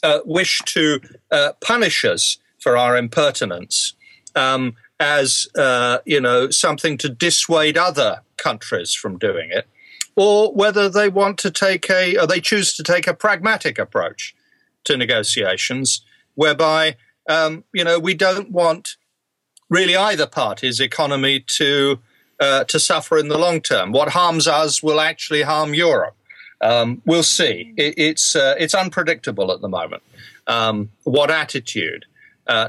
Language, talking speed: English, 145 wpm